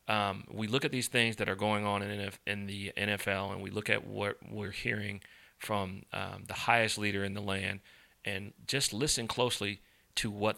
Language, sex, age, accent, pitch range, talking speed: English, male, 30-49, American, 100-115 Hz, 200 wpm